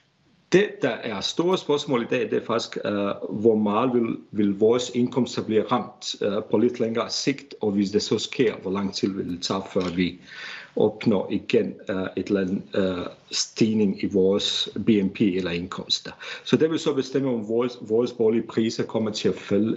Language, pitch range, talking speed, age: Danish, 100-125 Hz, 190 wpm, 50-69